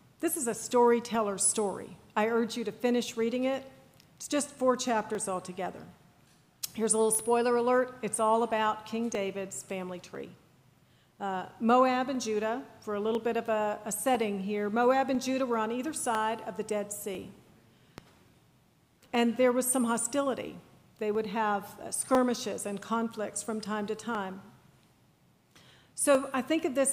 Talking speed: 165 wpm